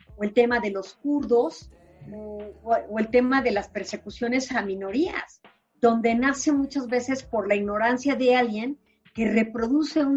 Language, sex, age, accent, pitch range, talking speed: Spanish, female, 40-59, Mexican, 205-250 Hz, 160 wpm